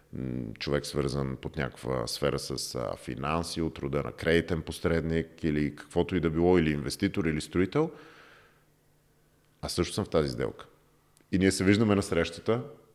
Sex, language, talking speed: male, Bulgarian, 155 wpm